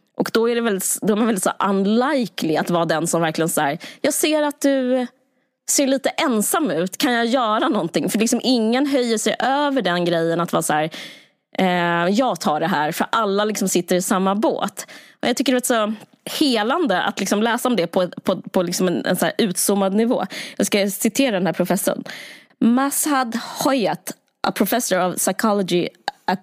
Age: 20-39